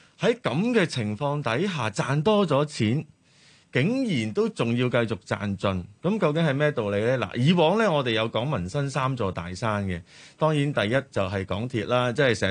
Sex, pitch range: male, 110-150 Hz